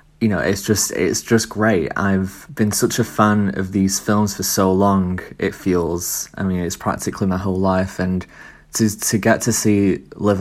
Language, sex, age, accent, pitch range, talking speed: English, male, 20-39, British, 90-105 Hz, 195 wpm